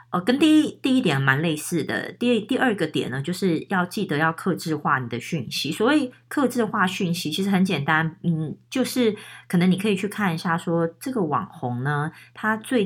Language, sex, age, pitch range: Chinese, female, 30-49, 155-200 Hz